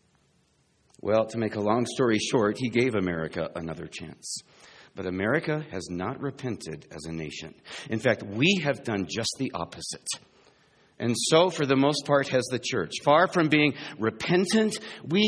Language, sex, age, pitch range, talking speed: English, male, 50-69, 120-185 Hz, 165 wpm